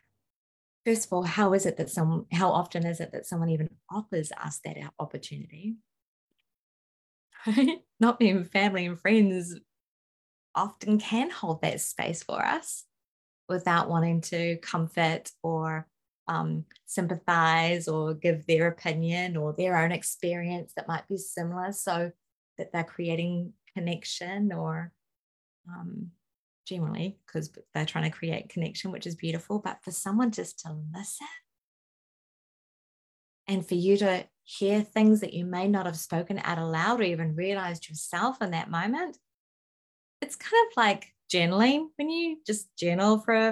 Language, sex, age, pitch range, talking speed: English, female, 20-39, 165-205 Hz, 145 wpm